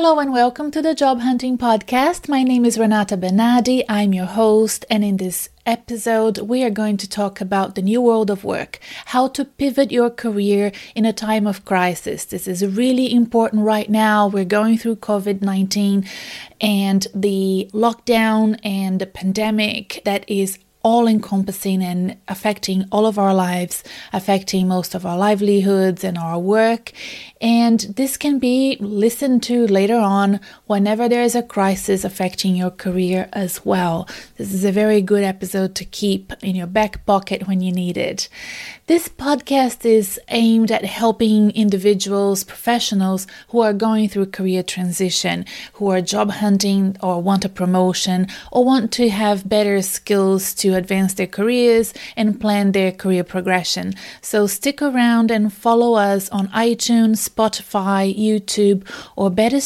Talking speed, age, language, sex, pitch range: 160 wpm, 30-49, English, female, 195-235 Hz